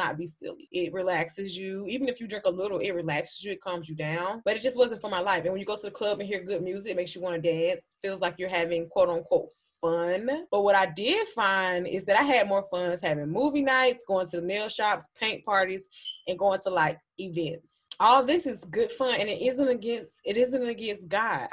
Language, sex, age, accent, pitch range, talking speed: English, female, 20-39, American, 180-245 Hz, 245 wpm